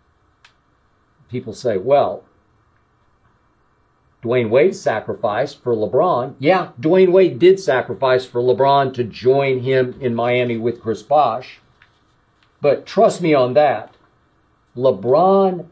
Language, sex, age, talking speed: English, male, 50-69, 110 wpm